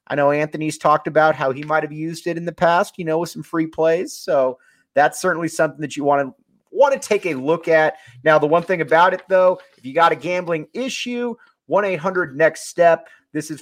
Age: 30-49